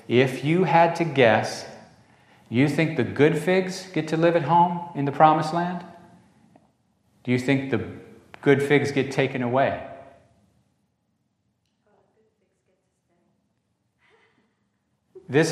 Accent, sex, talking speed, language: American, male, 110 wpm, English